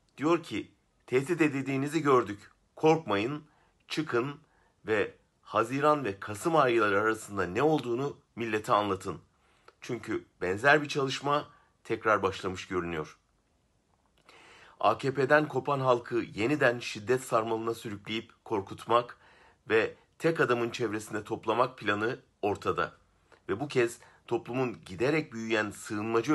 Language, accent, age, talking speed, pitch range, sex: Turkish, native, 50-69, 105 wpm, 100-130 Hz, male